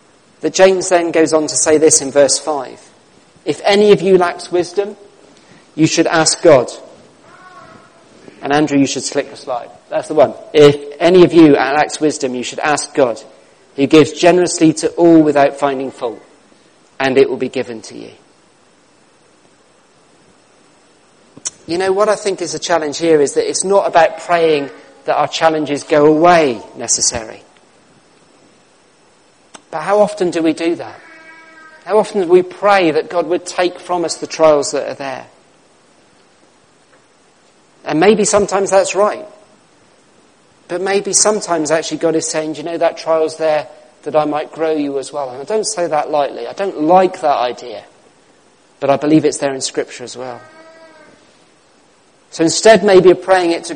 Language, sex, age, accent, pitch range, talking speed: English, male, 40-59, British, 150-190 Hz, 170 wpm